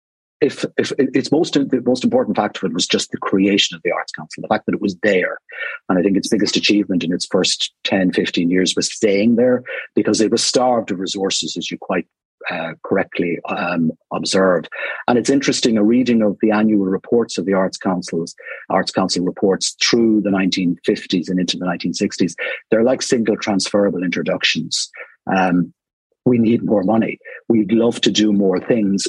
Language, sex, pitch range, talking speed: English, male, 95-120 Hz, 185 wpm